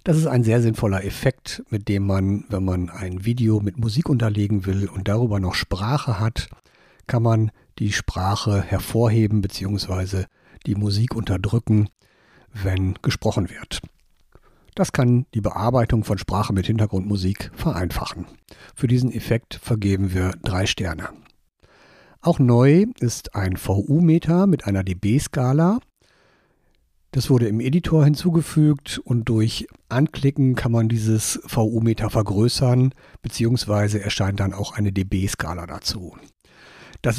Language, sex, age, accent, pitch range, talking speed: German, male, 60-79, German, 100-125 Hz, 130 wpm